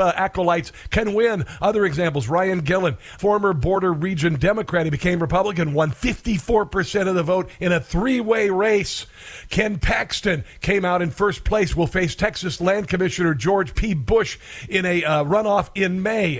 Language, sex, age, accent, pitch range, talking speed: English, male, 50-69, American, 165-205 Hz, 170 wpm